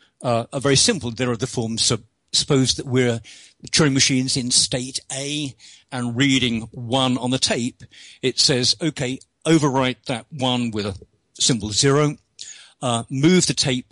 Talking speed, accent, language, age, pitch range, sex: 165 wpm, British, English, 50-69, 115-150 Hz, male